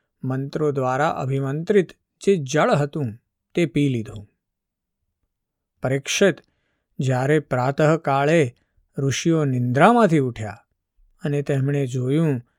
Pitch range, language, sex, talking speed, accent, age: 125-155 Hz, Gujarati, male, 90 wpm, native, 50-69